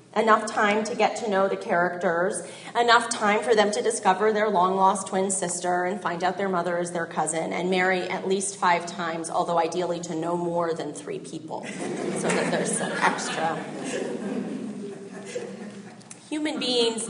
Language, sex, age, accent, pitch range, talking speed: English, female, 30-49, American, 175-215 Hz, 165 wpm